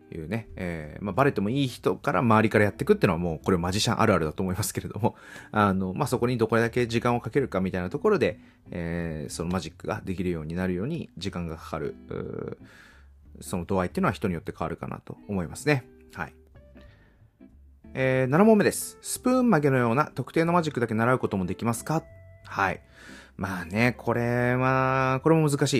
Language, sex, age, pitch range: Japanese, male, 30-49, 90-135 Hz